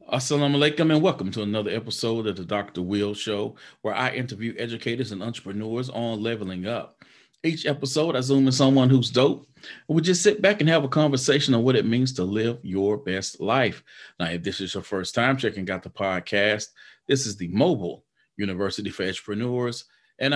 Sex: male